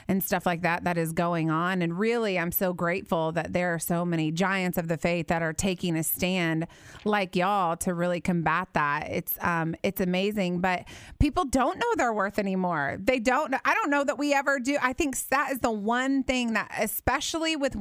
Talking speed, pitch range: 210 wpm, 180-225 Hz